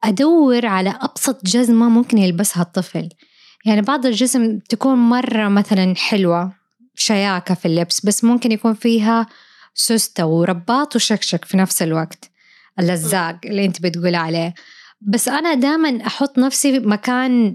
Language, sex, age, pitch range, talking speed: Arabic, female, 20-39, 180-230 Hz, 130 wpm